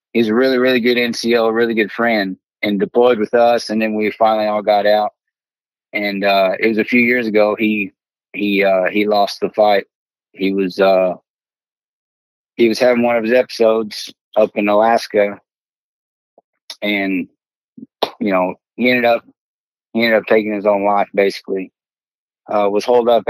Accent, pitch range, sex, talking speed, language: American, 100-115 Hz, male, 175 wpm, English